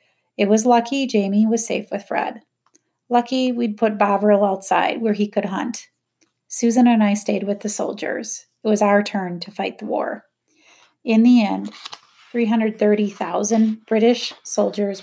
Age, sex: 30-49, female